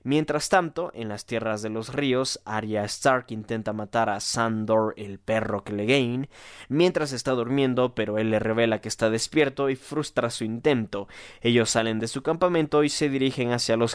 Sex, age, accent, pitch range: male, 20-39, Mexican, 105-125 Hz